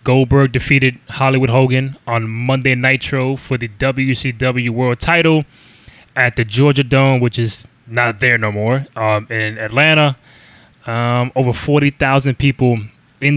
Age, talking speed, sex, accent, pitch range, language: 20-39, 135 wpm, male, American, 120-140 Hz, English